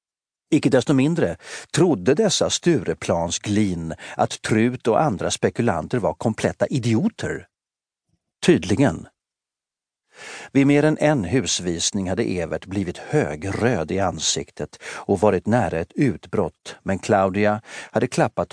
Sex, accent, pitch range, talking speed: male, native, 85-105 Hz, 115 wpm